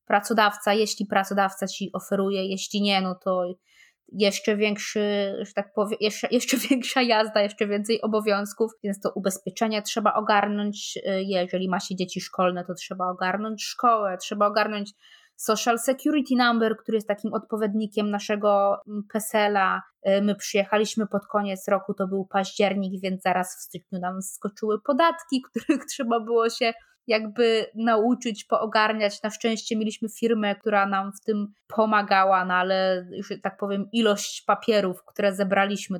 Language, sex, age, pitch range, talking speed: Polish, female, 20-39, 190-220 Hz, 140 wpm